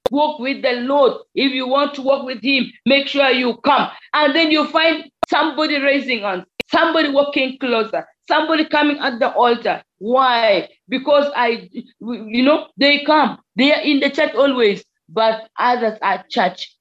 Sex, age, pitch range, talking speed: female, 40-59, 220-265 Hz, 170 wpm